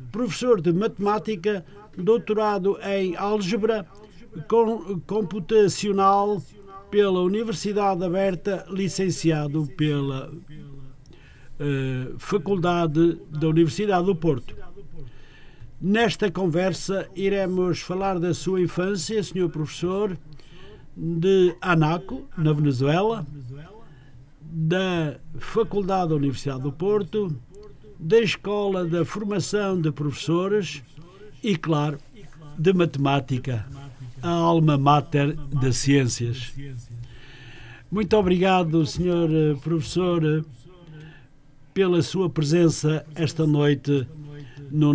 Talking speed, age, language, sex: 80 wpm, 50-69, Portuguese, male